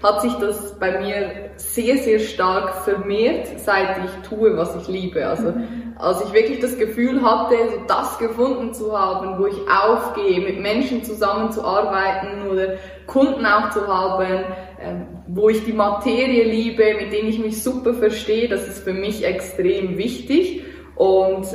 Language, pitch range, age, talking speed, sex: German, 185-220 Hz, 20-39, 155 wpm, female